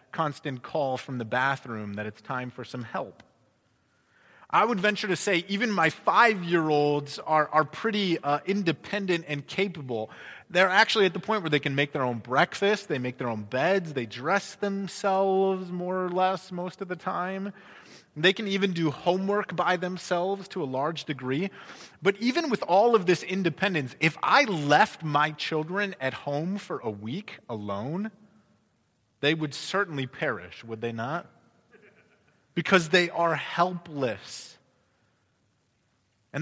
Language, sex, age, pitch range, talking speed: English, male, 30-49, 130-195 Hz, 155 wpm